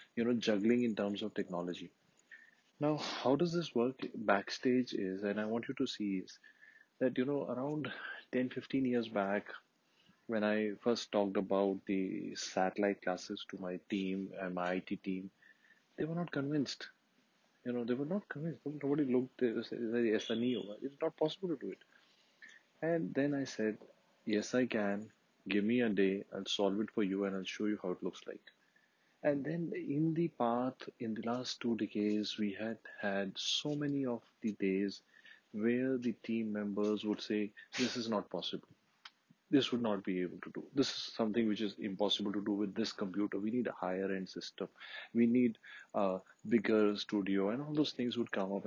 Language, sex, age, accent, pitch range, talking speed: English, male, 30-49, Indian, 100-125 Hz, 190 wpm